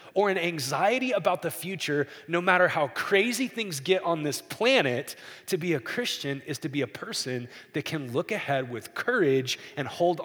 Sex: male